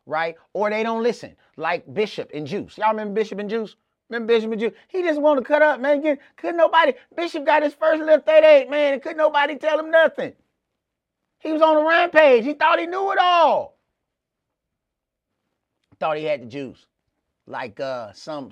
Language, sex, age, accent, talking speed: English, male, 30-49, American, 190 wpm